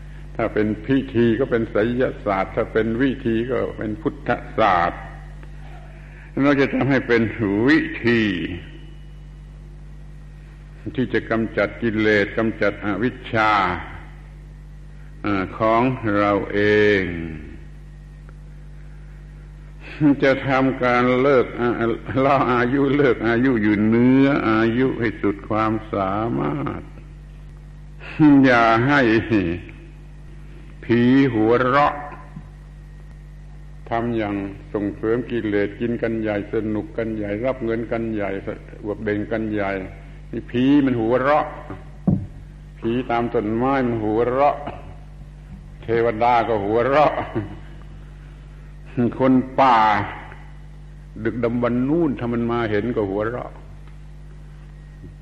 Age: 70-89